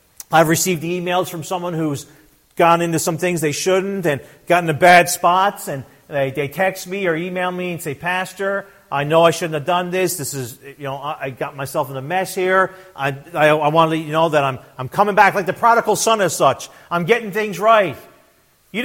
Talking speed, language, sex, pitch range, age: 225 wpm, English, male, 150-230 Hz, 40-59